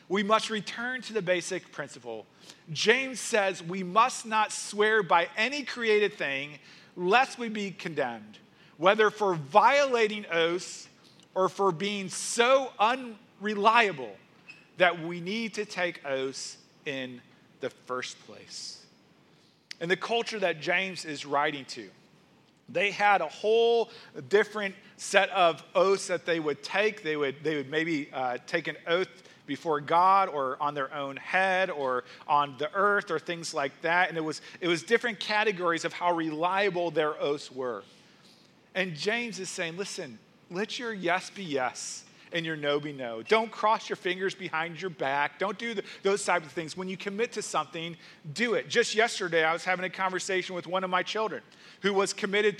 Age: 40-59